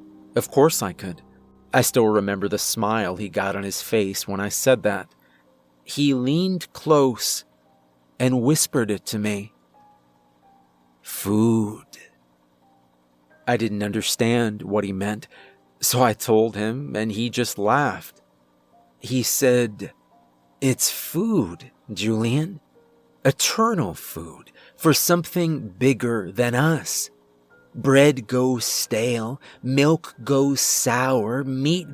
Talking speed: 115 wpm